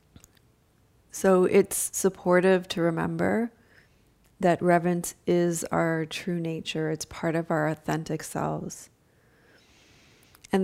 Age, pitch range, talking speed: 30-49, 165-190 Hz, 100 wpm